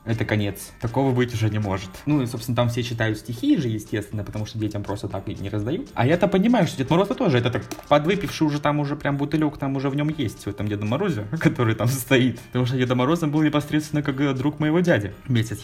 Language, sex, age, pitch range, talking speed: Russian, male, 20-39, 115-145 Hz, 240 wpm